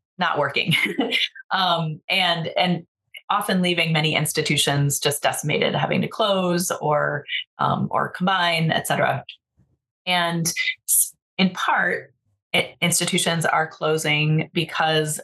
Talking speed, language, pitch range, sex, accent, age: 105 wpm, English, 150-185 Hz, female, American, 30-49